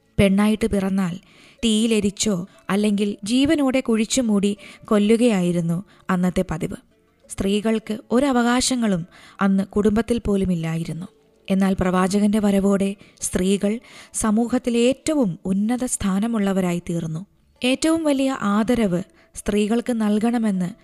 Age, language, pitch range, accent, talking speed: 20-39, Malayalam, 205-275 Hz, native, 85 wpm